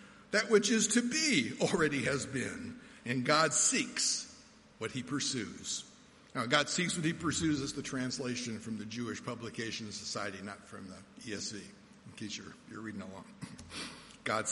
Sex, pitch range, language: male, 130-200 Hz, English